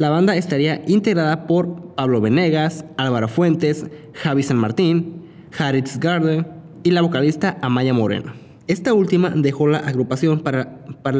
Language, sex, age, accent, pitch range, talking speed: English, male, 20-39, Mexican, 125-160 Hz, 140 wpm